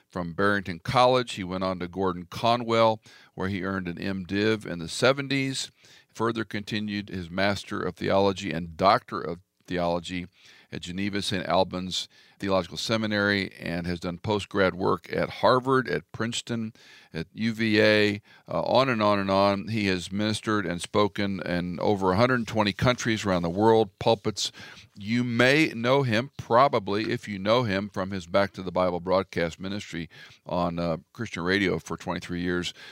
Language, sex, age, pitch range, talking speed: English, male, 50-69, 90-115 Hz, 155 wpm